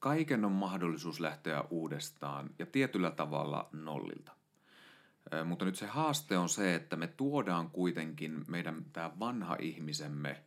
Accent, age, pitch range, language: native, 30-49, 75-90 Hz, Finnish